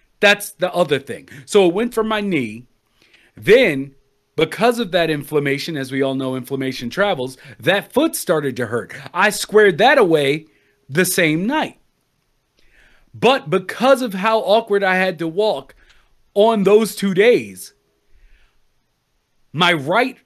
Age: 40-59